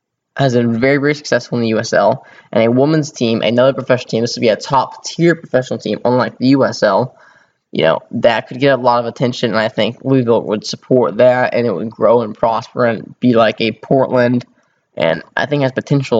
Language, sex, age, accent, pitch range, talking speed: English, male, 10-29, American, 115-135 Hz, 215 wpm